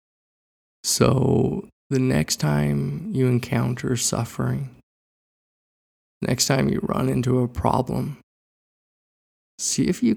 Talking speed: 100 wpm